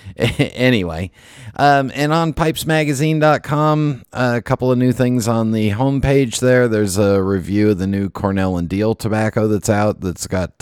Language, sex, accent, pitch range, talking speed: English, male, American, 90-120 Hz, 165 wpm